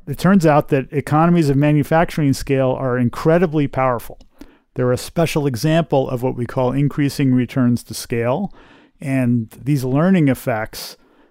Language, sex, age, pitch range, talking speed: English, male, 40-59, 125-150 Hz, 145 wpm